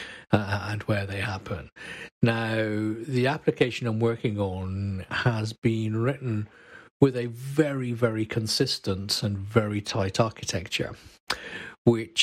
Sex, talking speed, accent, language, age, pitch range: male, 115 wpm, British, English, 50-69, 105-125 Hz